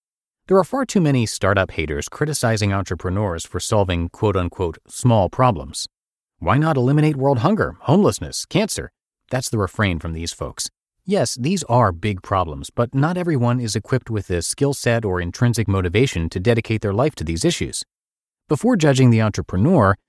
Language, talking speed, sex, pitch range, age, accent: English, 165 wpm, male, 95-130 Hz, 30-49, American